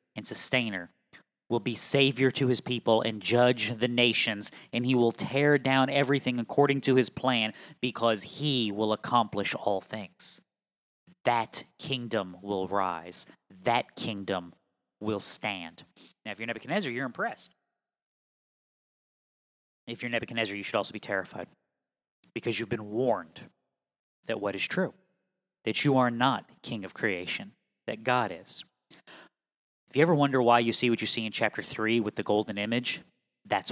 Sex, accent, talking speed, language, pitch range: male, American, 150 wpm, English, 110-135 Hz